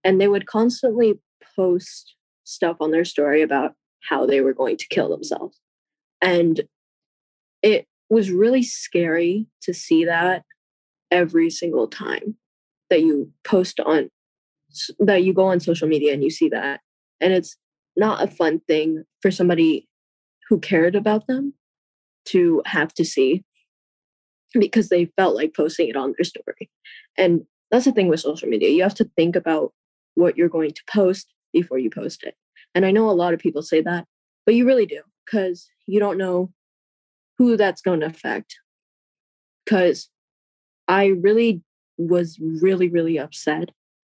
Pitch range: 160-210 Hz